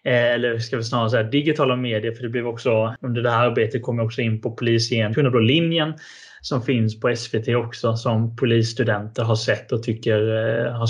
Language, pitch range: Swedish, 120-140 Hz